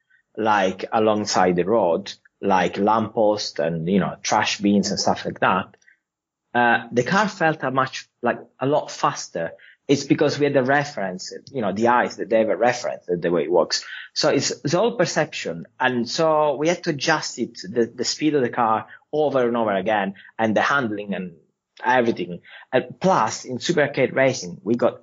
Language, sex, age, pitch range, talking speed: English, male, 30-49, 110-145 Hz, 185 wpm